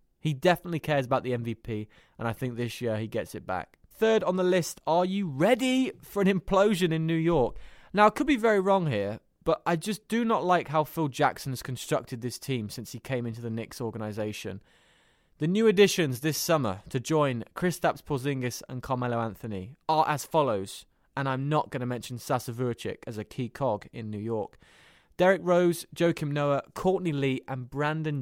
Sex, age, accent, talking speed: male, 20-39, British, 200 wpm